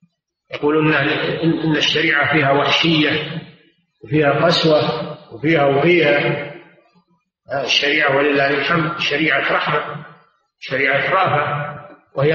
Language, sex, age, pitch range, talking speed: Arabic, male, 50-69, 160-220 Hz, 85 wpm